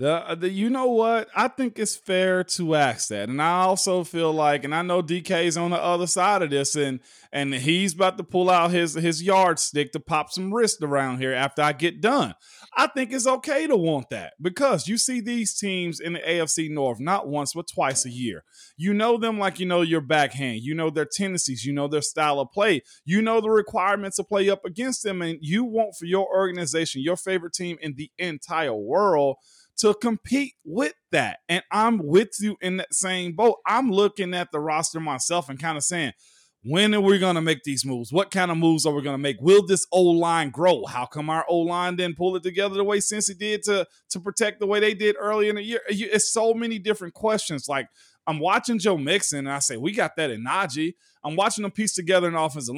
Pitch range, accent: 155-205 Hz, American